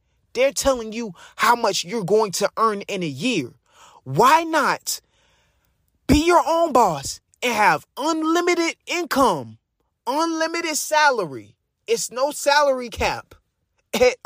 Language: English